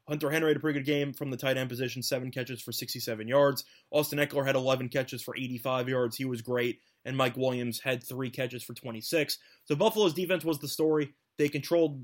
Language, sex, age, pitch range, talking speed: English, male, 20-39, 125-150 Hz, 220 wpm